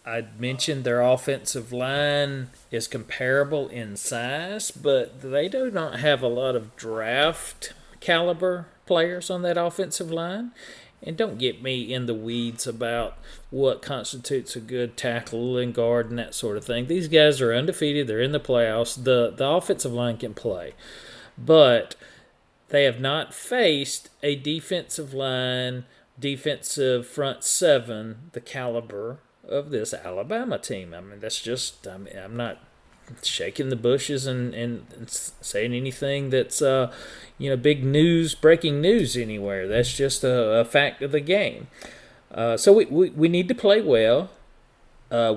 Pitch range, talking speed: 120-150 Hz, 155 wpm